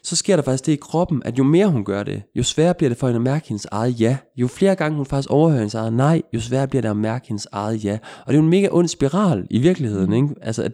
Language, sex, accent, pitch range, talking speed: Danish, male, native, 110-160 Hz, 305 wpm